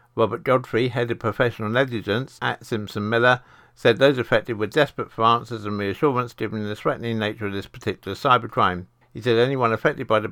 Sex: male